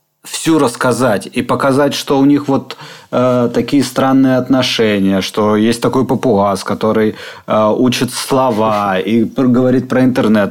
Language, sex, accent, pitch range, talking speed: Russian, male, native, 110-140 Hz, 135 wpm